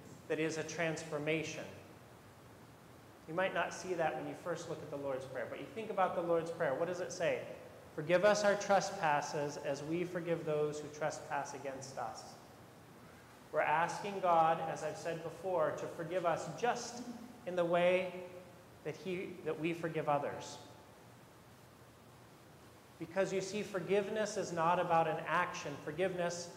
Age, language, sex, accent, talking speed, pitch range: 30-49, English, male, American, 155 wpm, 160-200 Hz